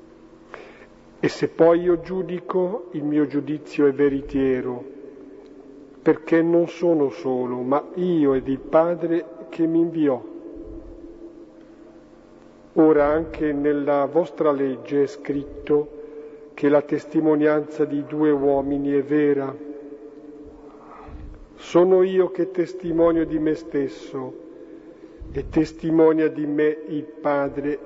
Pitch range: 140-160 Hz